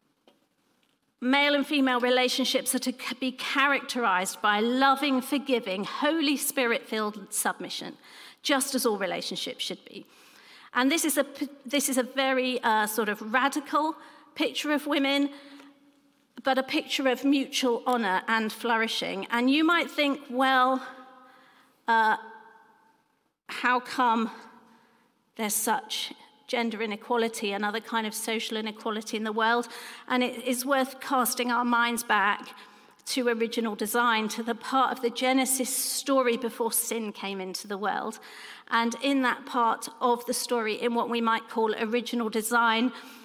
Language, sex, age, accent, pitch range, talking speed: English, female, 40-59, British, 230-270 Hz, 140 wpm